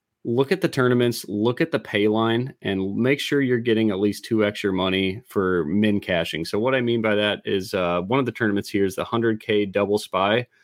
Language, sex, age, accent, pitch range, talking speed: English, male, 20-39, American, 100-115 Hz, 225 wpm